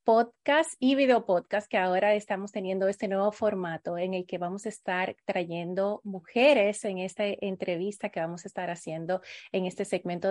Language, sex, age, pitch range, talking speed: Spanish, female, 30-49, 180-210 Hz, 175 wpm